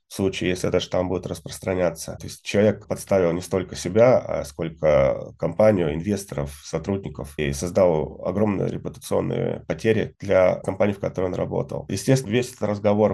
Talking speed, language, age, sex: 155 wpm, Russian, 20-39, male